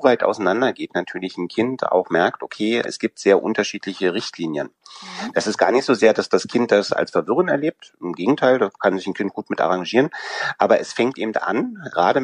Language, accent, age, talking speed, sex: German, German, 30-49, 210 wpm, male